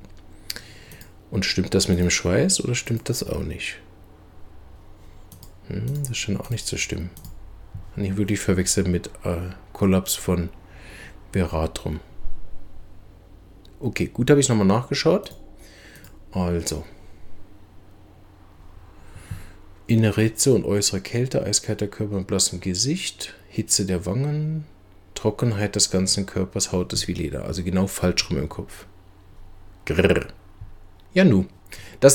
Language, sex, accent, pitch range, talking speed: German, male, German, 90-105 Hz, 130 wpm